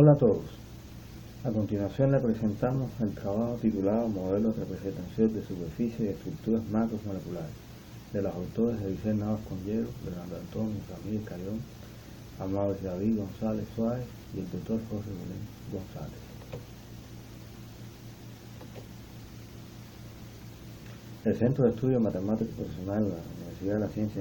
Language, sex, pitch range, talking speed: English, male, 105-115 Hz, 130 wpm